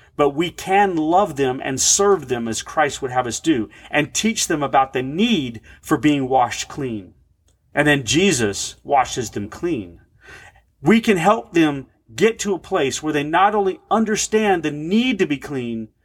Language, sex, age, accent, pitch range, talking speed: English, male, 40-59, American, 135-195 Hz, 180 wpm